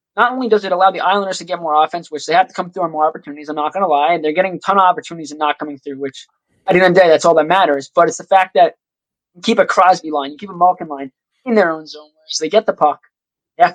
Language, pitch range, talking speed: English, 160-200 Hz, 320 wpm